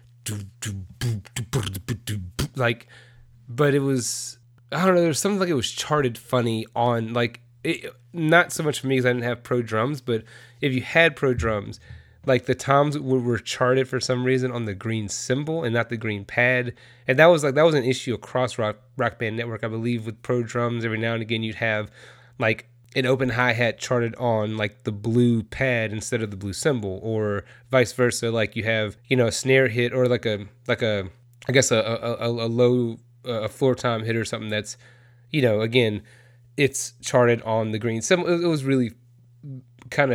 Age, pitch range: 30-49, 115-130 Hz